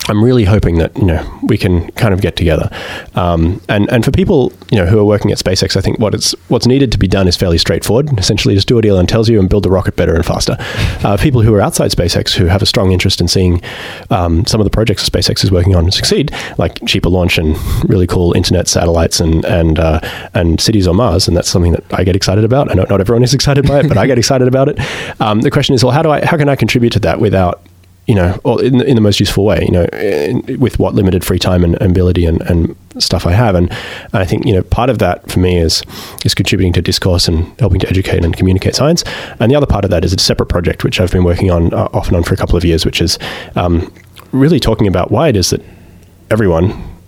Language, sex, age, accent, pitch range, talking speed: English, male, 30-49, Australian, 90-110 Hz, 265 wpm